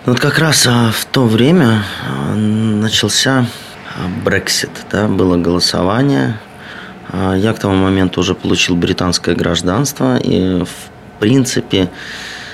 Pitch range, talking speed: 85-100 Hz, 100 wpm